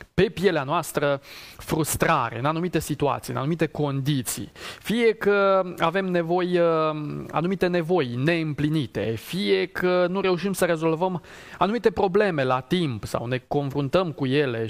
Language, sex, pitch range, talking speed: Romanian, male, 135-175 Hz, 125 wpm